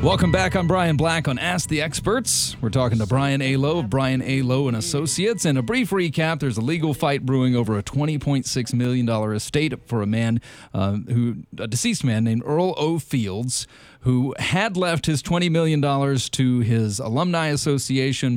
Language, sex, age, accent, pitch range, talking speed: English, male, 40-59, American, 115-145 Hz, 185 wpm